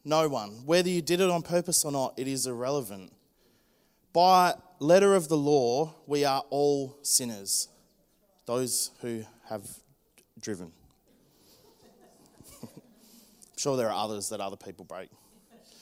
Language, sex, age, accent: English, male, 20-39, Australian